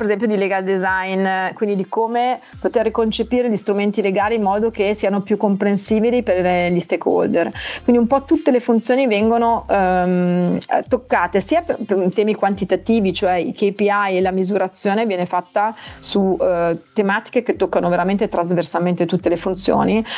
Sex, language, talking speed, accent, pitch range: female, Italian, 160 wpm, native, 180-210 Hz